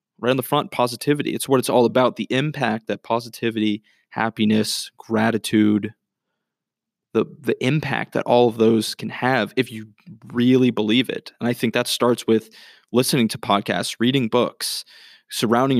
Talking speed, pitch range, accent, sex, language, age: 160 wpm, 110-125 Hz, American, male, English, 20-39